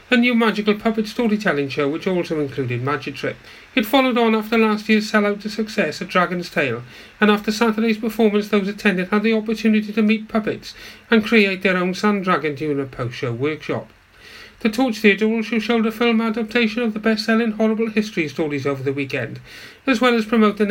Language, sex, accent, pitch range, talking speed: English, male, British, 170-225 Hz, 190 wpm